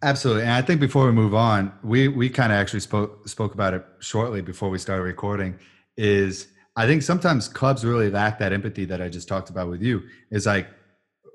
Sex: male